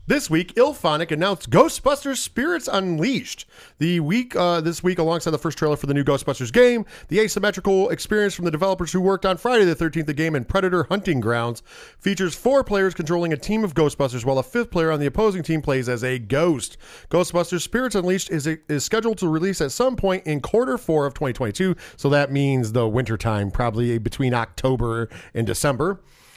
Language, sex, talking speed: English, male, 195 wpm